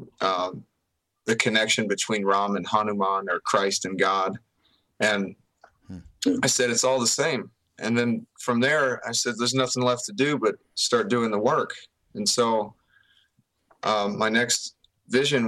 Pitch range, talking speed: 105-120 Hz, 160 wpm